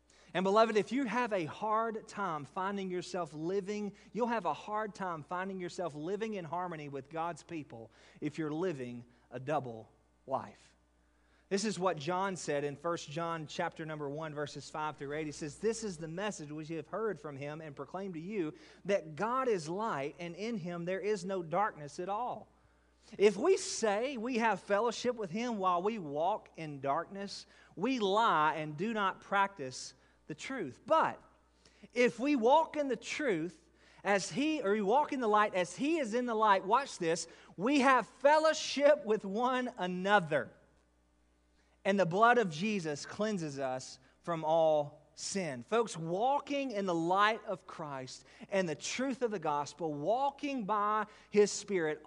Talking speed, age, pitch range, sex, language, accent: 175 wpm, 30-49, 155-215 Hz, male, English, American